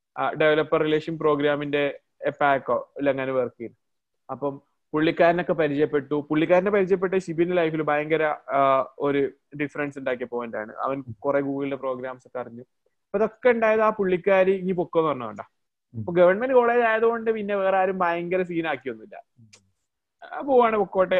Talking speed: 135 wpm